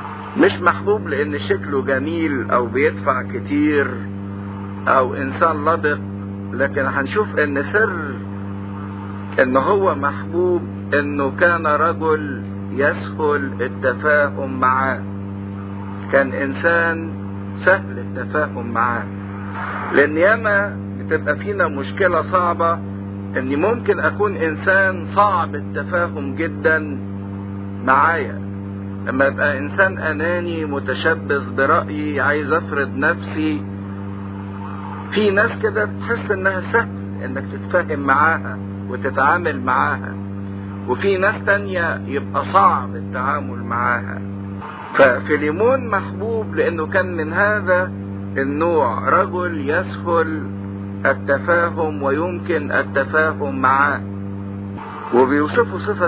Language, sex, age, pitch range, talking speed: English, male, 50-69, 100-105 Hz, 90 wpm